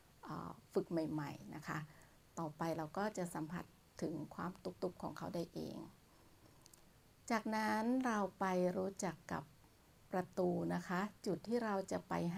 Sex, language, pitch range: female, Thai, 165-210 Hz